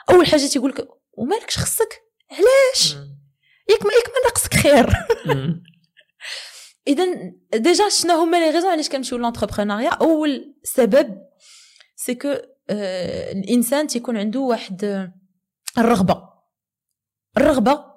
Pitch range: 200-315 Hz